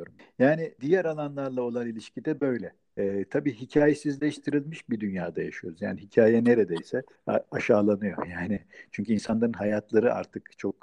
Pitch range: 105-125 Hz